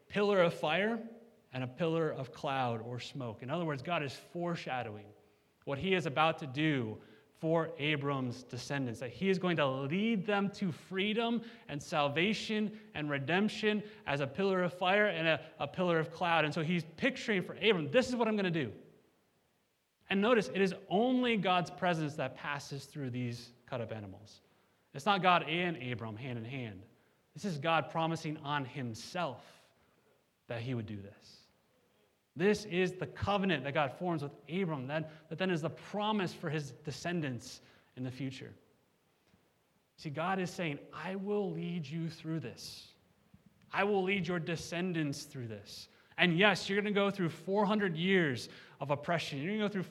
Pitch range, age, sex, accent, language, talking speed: 140-195 Hz, 30-49, male, American, English, 180 wpm